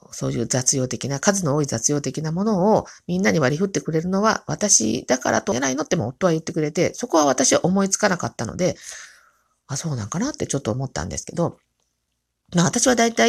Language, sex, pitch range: Japanese, female, 135-210 Hz